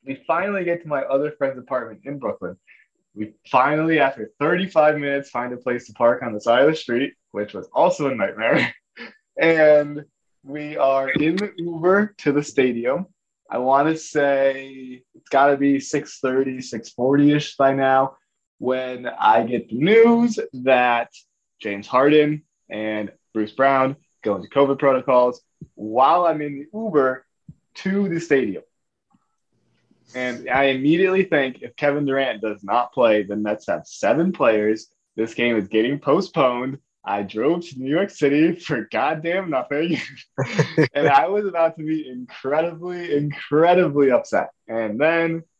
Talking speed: 150 wpm